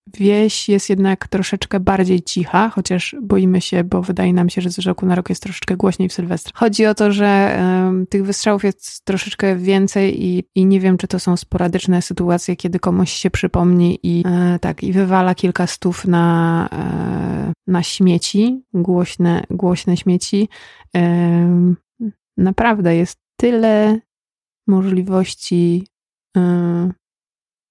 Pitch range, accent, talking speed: 180-200 Hz, native, 130 wpm